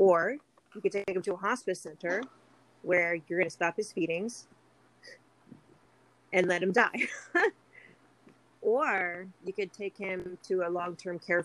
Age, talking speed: 30-49, 150 wpm